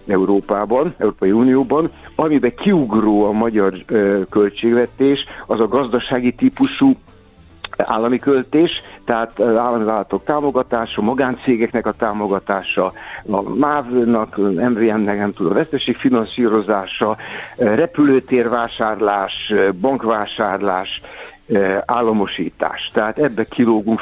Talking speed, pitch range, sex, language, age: 80 wpm, 105-130 Hz, male, Hungarian, 60-79